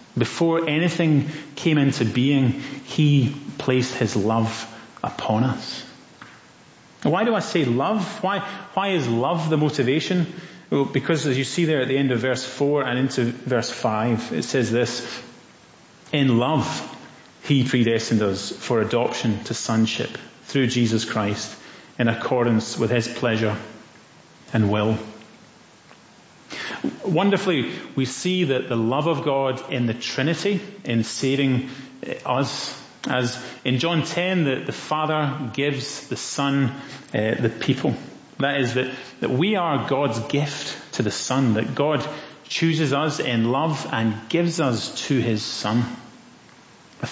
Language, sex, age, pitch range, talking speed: English, male, 30-49, 120-150 Hz, 140 wpm